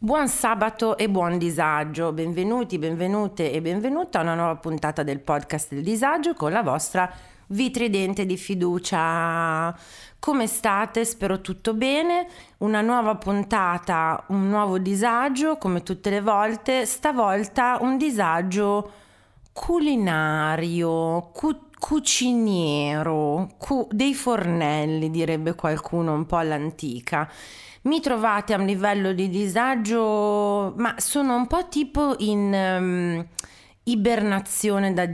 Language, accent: Italian, native